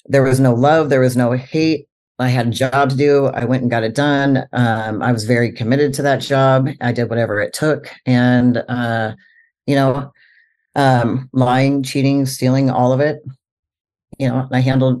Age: 40-59